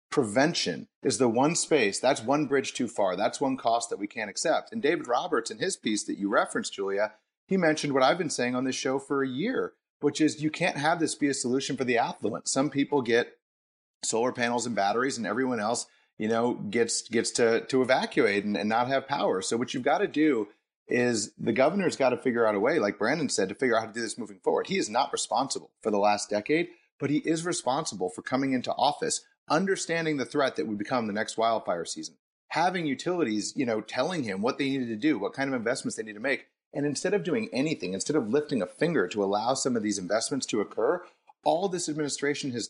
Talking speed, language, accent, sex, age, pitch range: 235 wpm, English, American, male, 30-49, 120-155 Hz